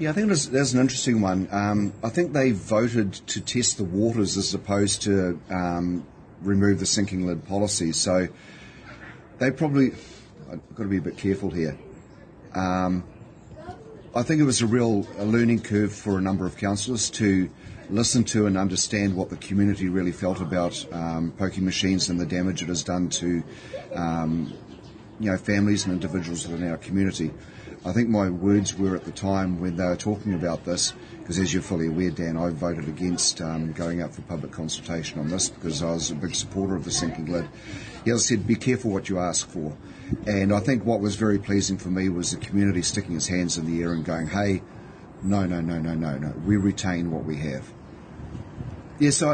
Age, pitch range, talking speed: 40-59, 90-110 Hz, 200 wpm